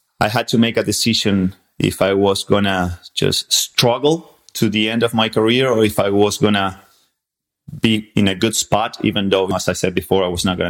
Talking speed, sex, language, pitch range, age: 225 wpm, male, English, 100-120 Hz, 30-49